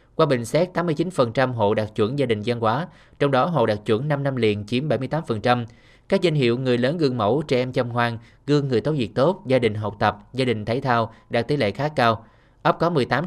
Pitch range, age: 115-145 Hz, 20-39